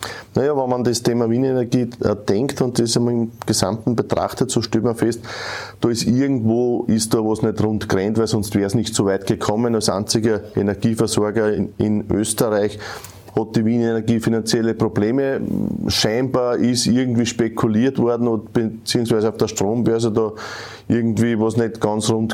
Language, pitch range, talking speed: German, 110-125 Hz, 160 wpm